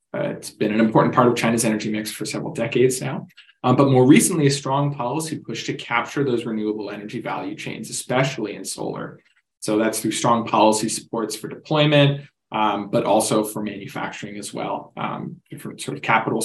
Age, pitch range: 20-39, 110-130 Hz